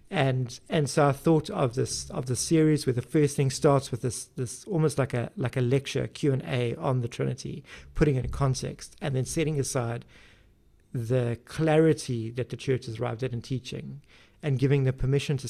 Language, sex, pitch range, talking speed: English, male, 120-140 Hz, 205 wpm